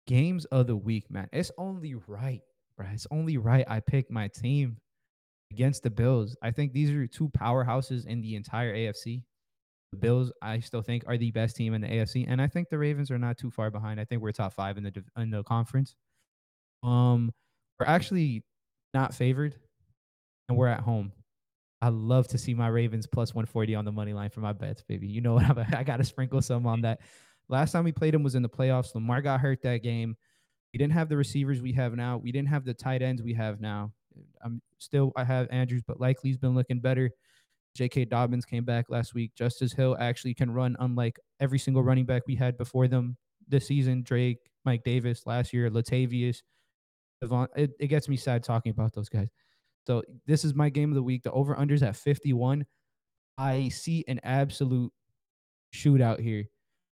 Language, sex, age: English, male, 20-39